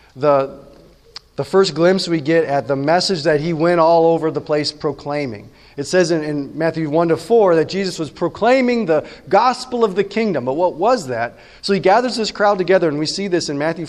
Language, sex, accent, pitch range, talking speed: English, male, American, 140-200 Hz, 205 wpm